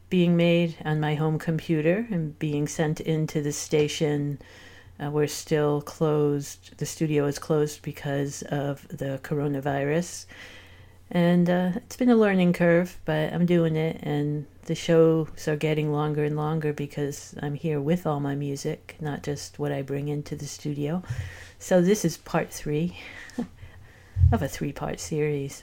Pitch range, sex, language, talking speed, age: 140-160 Hz, female, English, 155 wpm, 50-69